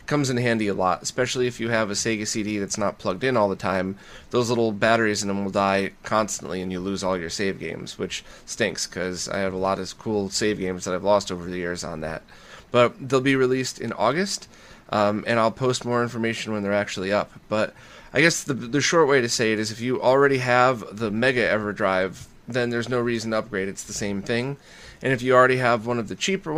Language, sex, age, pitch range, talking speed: English, male, 30-49, 100-130 Hz, 240 wpm